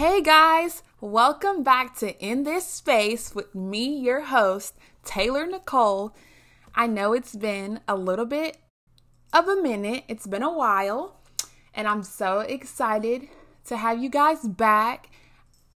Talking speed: 140 wpm